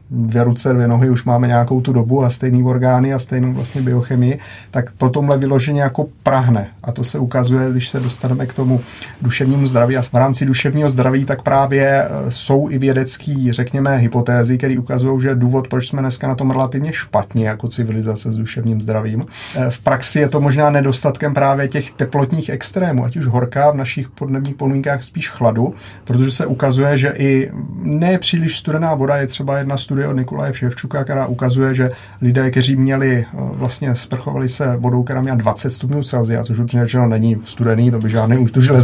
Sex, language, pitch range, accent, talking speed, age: male, Czech, 125-140 Hz, native, 185 wpm, 30-49